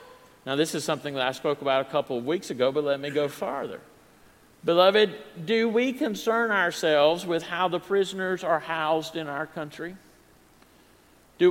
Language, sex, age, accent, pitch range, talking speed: English, male, 50-69, American, 160-200 Hz, 170 wpm